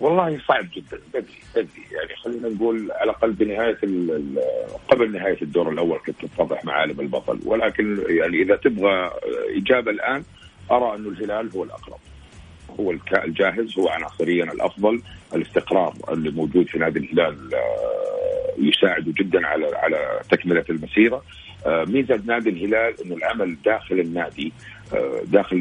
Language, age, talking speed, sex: Arabic, 50-69, 130 wpm, male